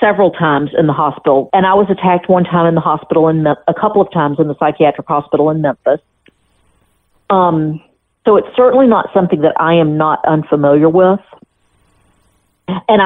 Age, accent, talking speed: 50-69, American, 175 wpm